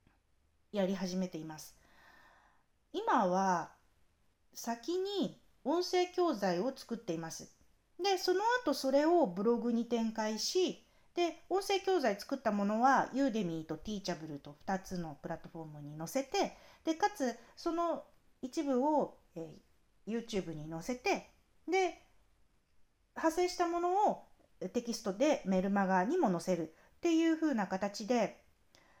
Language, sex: Japanese, female